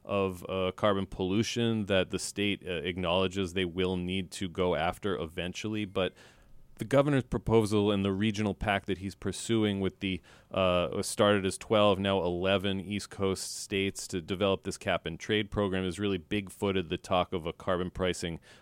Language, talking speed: English, 175 wpm